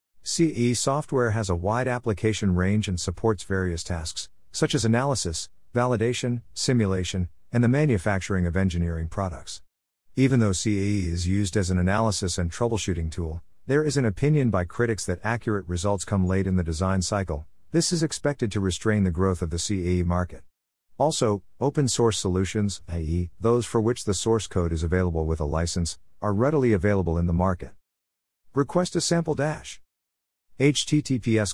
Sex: male